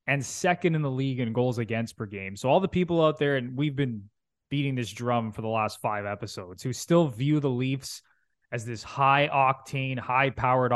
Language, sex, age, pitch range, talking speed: English, male, 20-39, 125-160 Hz, 200 wpm